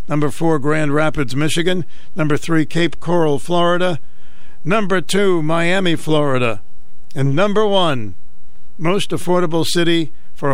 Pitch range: 120-155 Hz